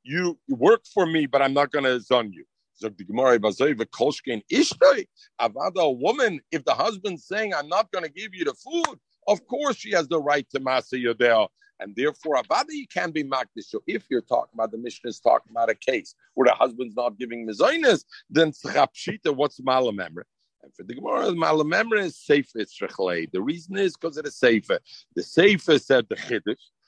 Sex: male